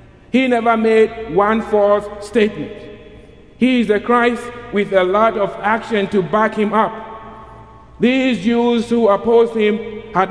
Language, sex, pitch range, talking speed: English, male, 180-220 Hz, 145 wpm